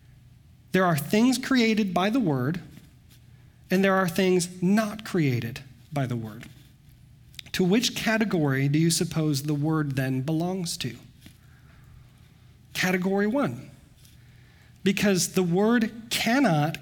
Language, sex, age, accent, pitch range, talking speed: English, male, 40-59, American, 130-185 Hz, 120 wpm